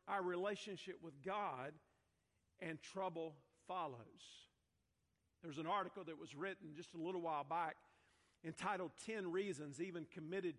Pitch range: 160-190 Hz